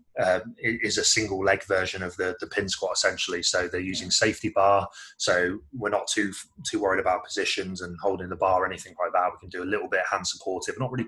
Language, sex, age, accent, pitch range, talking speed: English, male, 20-39, British, 90-100 Hz, 245 wpm